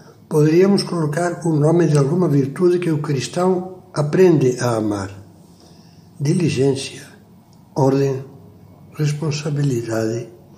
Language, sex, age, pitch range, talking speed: Portuguese, male, 60-79, 130-170 Hz, 90 wpm